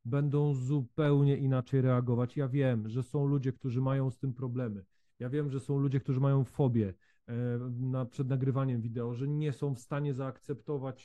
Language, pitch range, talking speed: Polish, 130-155 Hz, 170 wpm